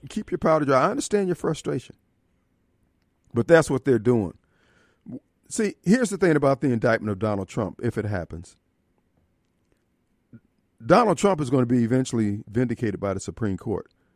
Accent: American